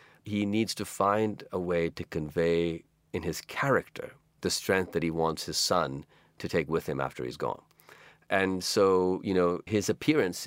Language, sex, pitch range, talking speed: English, male, 80-95 Hz, 180 wpm